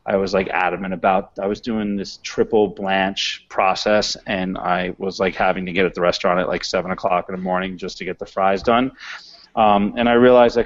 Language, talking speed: English, 225 wpm